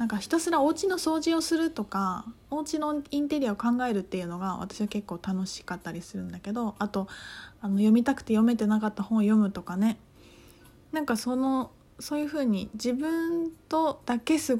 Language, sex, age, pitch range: Japanese, female, 20-39, 210-290 Hz